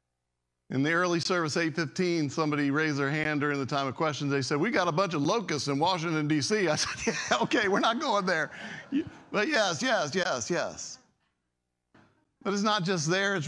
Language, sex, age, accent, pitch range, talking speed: English, male, 50-69, American, 130-175 Hz, 195 wpm